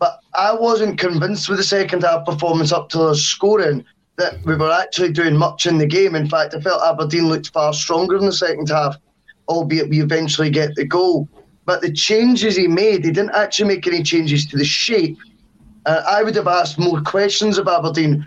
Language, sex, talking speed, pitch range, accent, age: English, male, 205 wpm, 155-190 Hz, British, 10-29